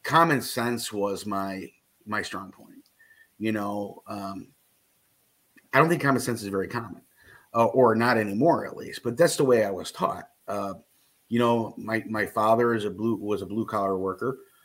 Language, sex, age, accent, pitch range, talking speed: English, male, 30-49, American, 105-120 Hz, 185 wpm